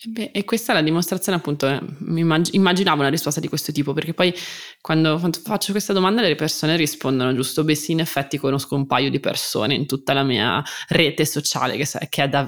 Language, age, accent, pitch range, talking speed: Italian, 20-39, native, 140-170 Hz, 200 wpm